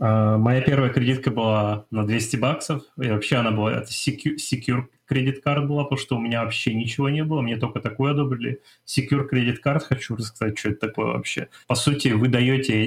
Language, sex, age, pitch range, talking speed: Russian, male, 20-39, 110-130 Hz, 190 wpm